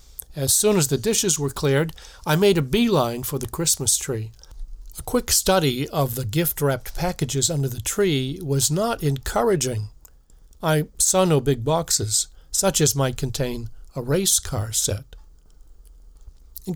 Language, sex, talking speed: English, male, 150 wpm